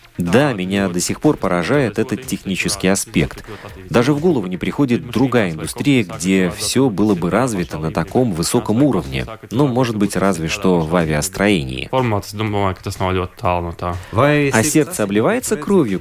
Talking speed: 140 wpm